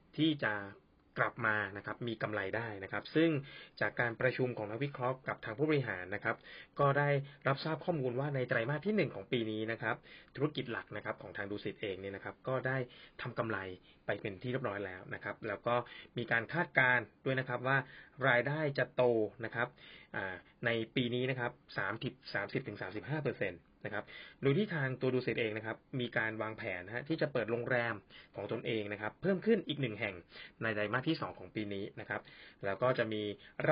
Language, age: Thai, 20-39